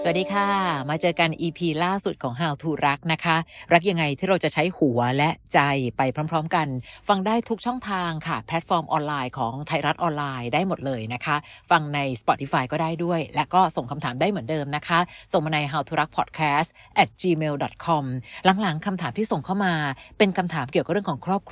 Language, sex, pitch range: Thai, female, 145-195 Hz